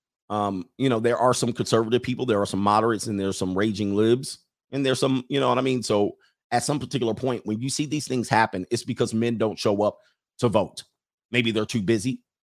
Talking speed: 230 wpm